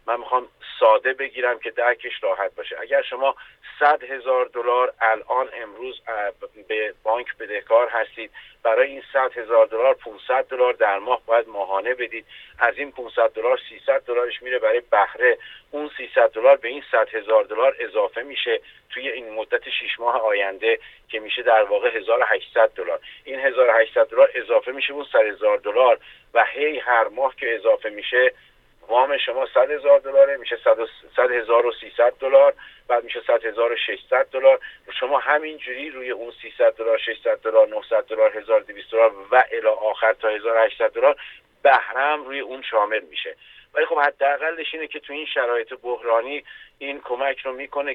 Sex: male